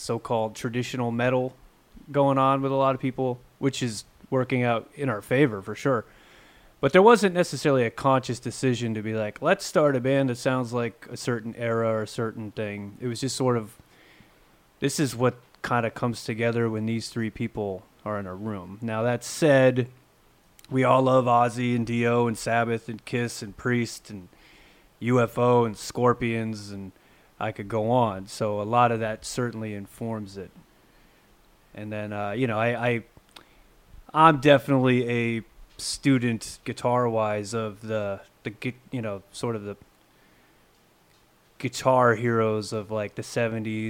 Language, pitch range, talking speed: English, 110-130 Hz, 165 wpm